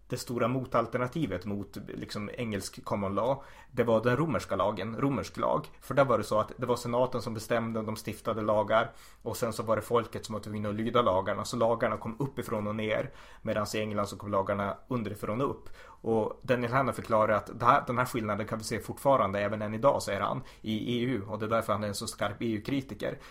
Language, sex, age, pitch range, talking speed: Swedish, male, 30-49, 105-120 Hz, 225 wpm